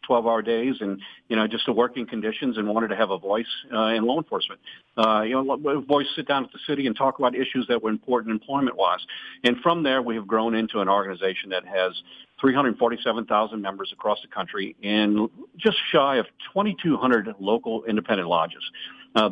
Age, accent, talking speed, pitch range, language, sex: 50-69, American, 195 wpm, 110-135 Hz, English, male